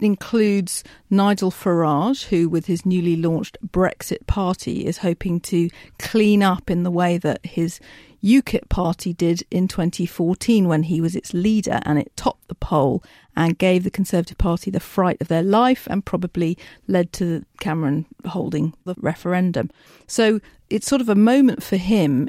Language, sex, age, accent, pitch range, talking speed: English, female, 40-59, British, 175-215 Hz, 165 wpm